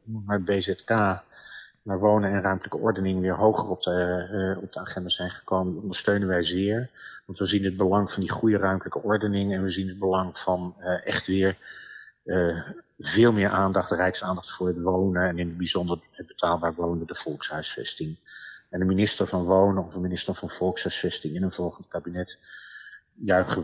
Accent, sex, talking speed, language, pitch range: Dutch, male, 185 wpm, Dutch, 90-100 Hz